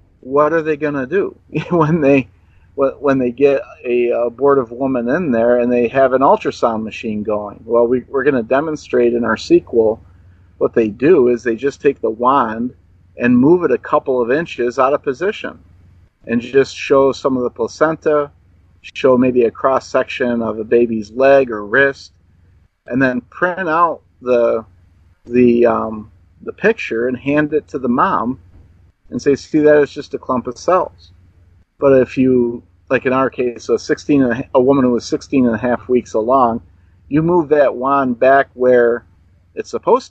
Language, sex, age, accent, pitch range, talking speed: English, male, 40-59, American, 105-140 Hz, 185 wpm